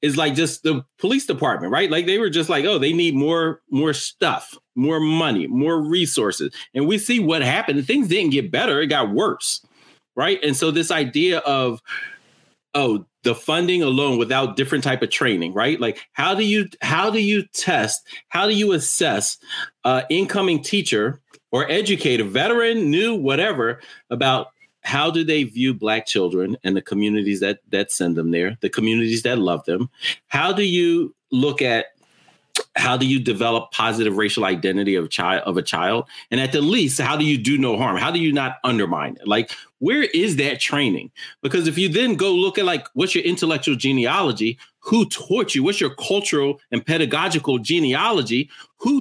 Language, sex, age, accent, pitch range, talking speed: English, male, 40-59, American, 130-200 Hz, 185 wpm